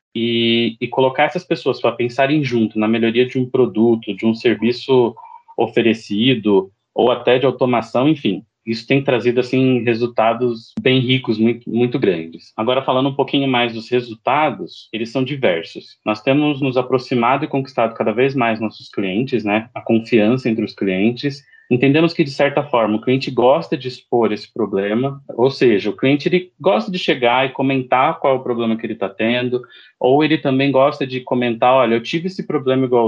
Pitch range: 115-135 Hz